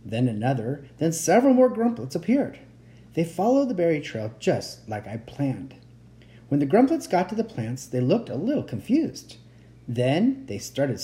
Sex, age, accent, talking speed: male, 40-59, American, 170 wpm